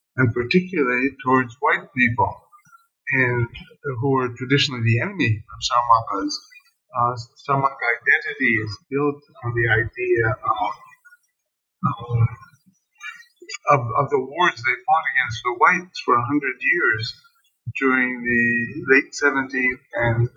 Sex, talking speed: male, 120 wpm